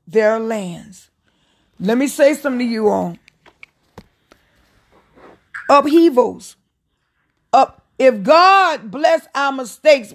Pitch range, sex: 225-310 Hz, female